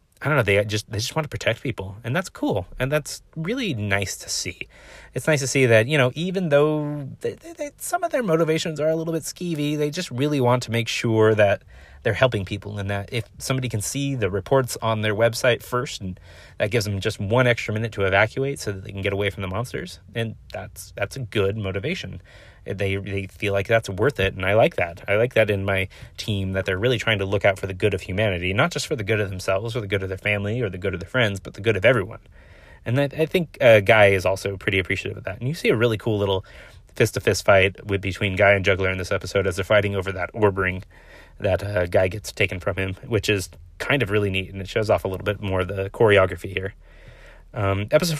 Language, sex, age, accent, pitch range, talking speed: English, male, 30-49, American, 95-125 Hz, 255 wpm